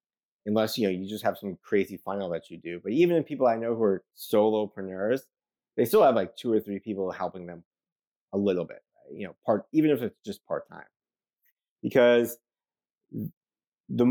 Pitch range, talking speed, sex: 95-120 Hz, 190 wpm, male